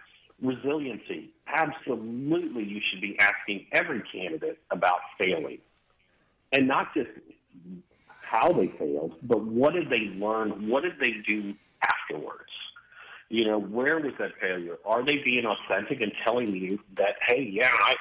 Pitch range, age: 105-145 Hz, 50-69